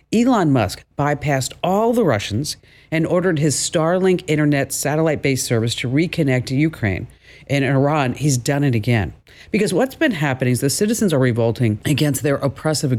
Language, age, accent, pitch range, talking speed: English, 50-69, American, 125-160 Hz, 165 wpm